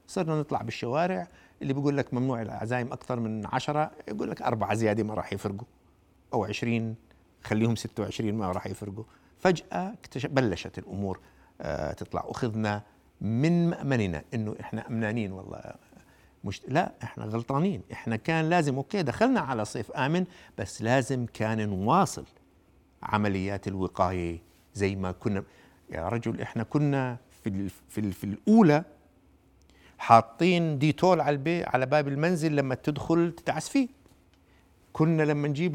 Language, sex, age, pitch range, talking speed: Arabic, male, 60-79, 105-150 Hz, 130 wpm